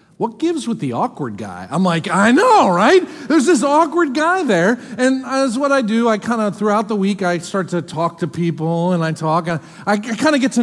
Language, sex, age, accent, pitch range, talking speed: English, male, 40-59, American, 190-265 Hz, 230 wpm